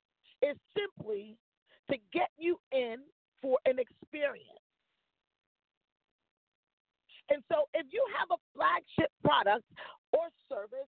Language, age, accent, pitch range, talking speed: English, 40-59, American, 265-340 Hz, 105 wpm